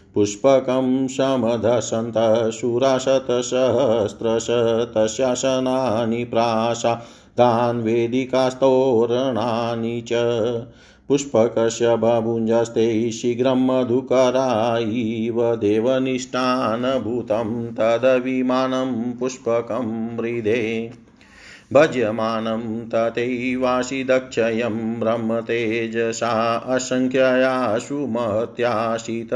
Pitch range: 115-130 Hz